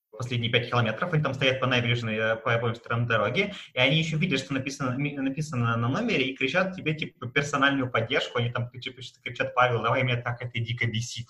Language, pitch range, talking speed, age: Russian, 125-150 Hz, 205 wpm, 20-39